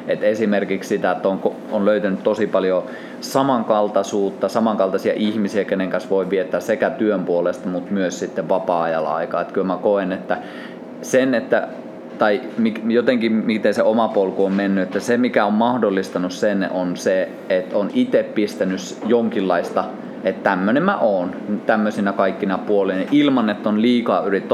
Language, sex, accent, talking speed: Finnish, male, native, 155 wpm